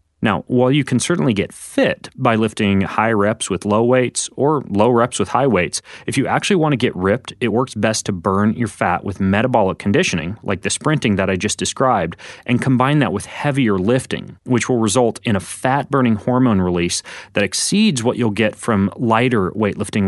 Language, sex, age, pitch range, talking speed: English, male, 30-49, 100-125 Hz, 195 wpm